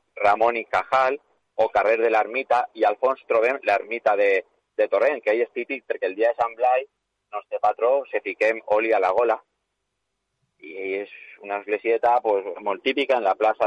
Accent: Spanish